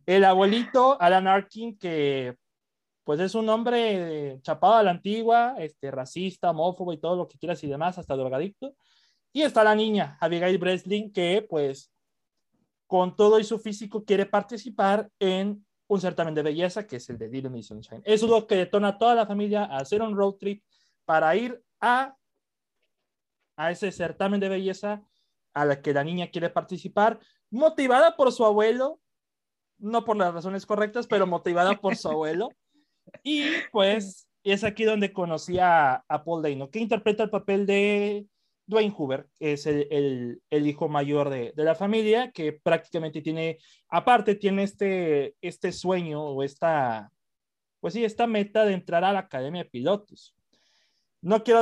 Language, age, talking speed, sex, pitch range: Spanish, 30-49, 165 wpm, male, 165-220 Hz